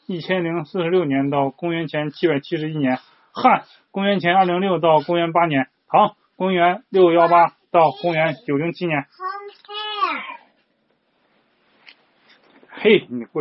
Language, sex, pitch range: Chinese, male, 135-185 Hz